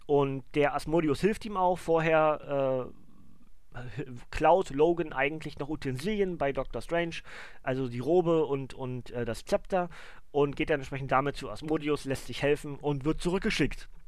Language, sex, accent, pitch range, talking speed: German, male, German, 135-170 Hz, 160 wpm